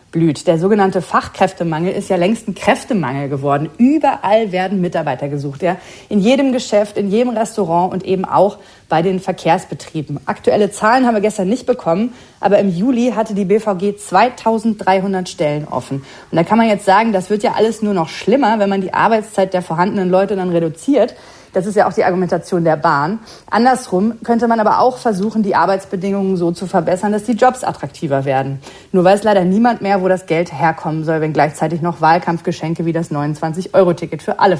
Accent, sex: German, female